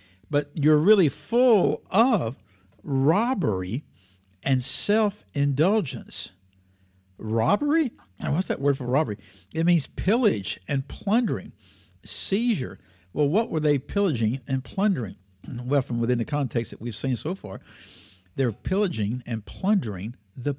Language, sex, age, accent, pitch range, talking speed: English, male, 60-79, American, 100-170 Hz, 120 wpm